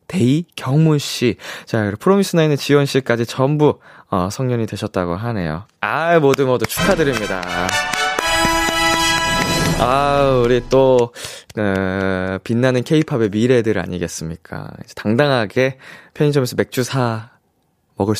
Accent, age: native, 20-39